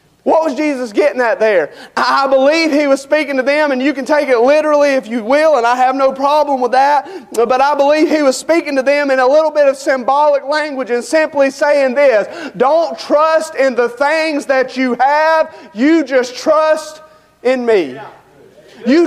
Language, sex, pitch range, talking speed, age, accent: English, male, 265-305 Hz, 195 wpm, 30-49, American